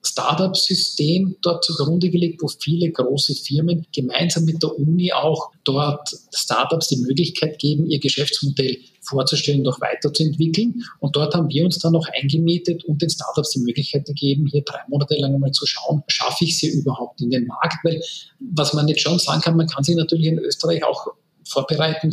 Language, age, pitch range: German, 40-59, 140-170 Hz